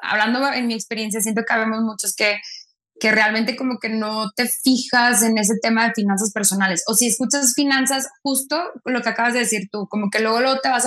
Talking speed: 215 wpm